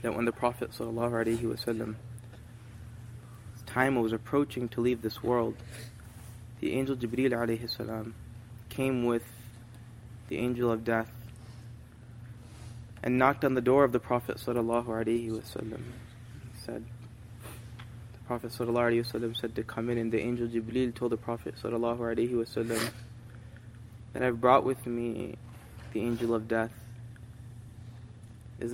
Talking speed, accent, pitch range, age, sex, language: 125 wpm, American, 115-120 Hz, 20-39, male, English